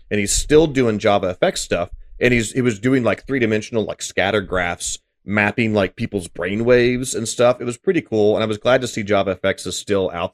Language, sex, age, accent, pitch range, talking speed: English, male, 30-49, American, 90-110 Hz, 220 wpm